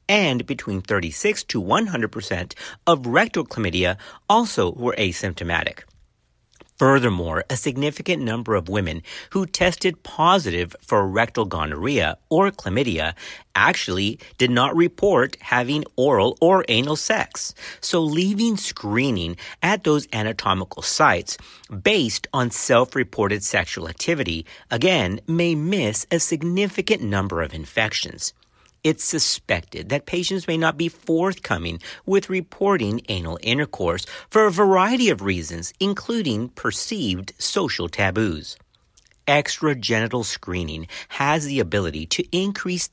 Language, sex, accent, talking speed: English, male, American, 115 wpm